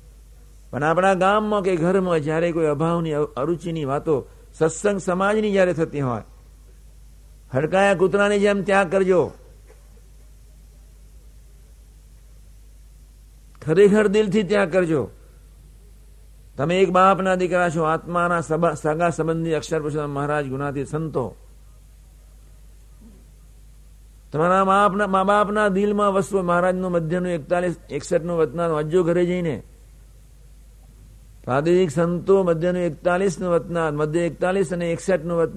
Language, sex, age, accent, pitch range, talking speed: Gujarati, male, 60-79, native, 150-185 Hz, 95 wpm